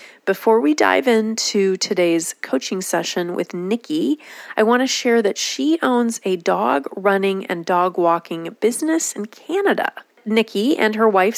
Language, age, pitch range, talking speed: English, 30-49, 180-235 Hz, 155 wpm